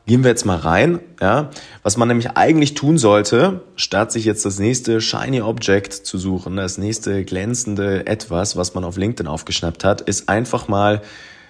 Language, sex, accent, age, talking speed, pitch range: German, male, German, 30-49, 170 wpm, 85-110 Hz